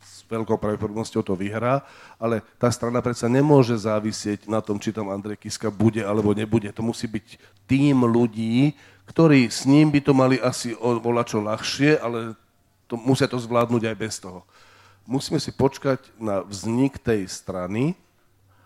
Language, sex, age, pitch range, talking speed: Slovak, male, 40-59, 110-135 Hz, 160 wpm